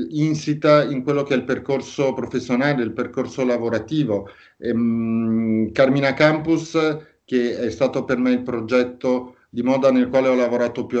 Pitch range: 115-140 Hz